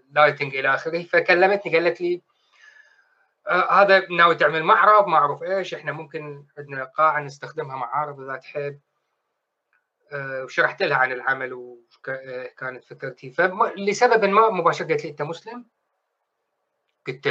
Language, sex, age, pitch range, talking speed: Arabic, male, 20-39, 130-175 Hz, 130 wpm